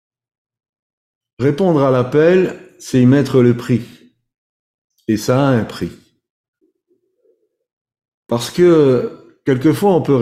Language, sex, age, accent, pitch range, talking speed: French, male, 50-69, French, 115-155 Hz, 105 wpm